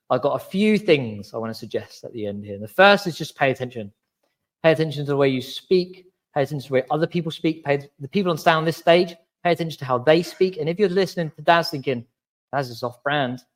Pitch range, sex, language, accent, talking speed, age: 120-160 Hz, male, English, British, 255 wpm, 20-39